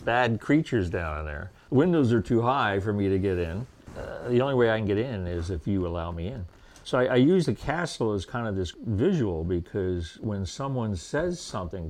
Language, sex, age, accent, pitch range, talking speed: English, male, 50-69, American, 90-110 Hz, 215 wpm